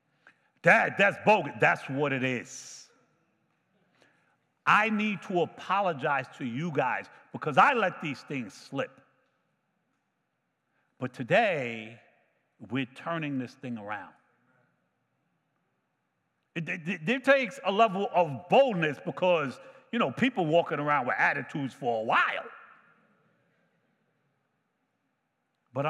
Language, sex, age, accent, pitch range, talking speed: English, male, 50-69, American, 135-215 Hz, 110 wpm